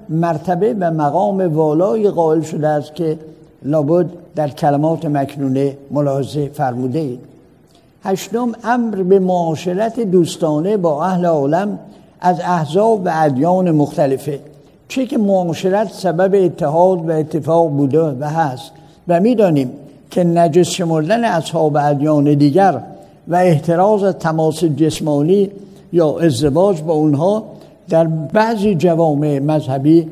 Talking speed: 115 wpm